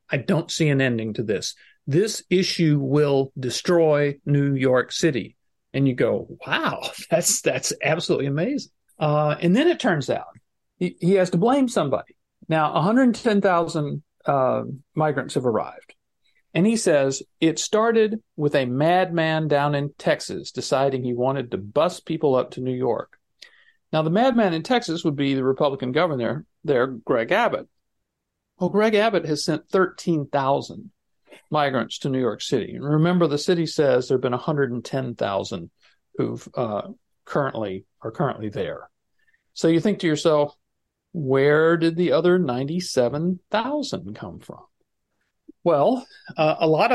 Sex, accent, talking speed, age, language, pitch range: male, American, 150 wpm, 50-69, English, 135-180 Hz